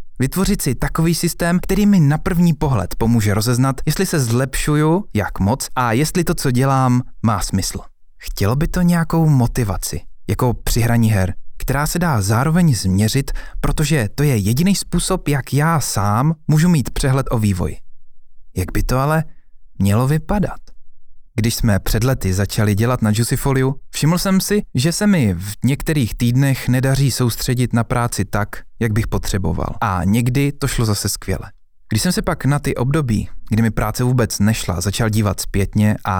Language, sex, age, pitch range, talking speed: Czech, male, 20-39, 105-145 Hz, 170 wpm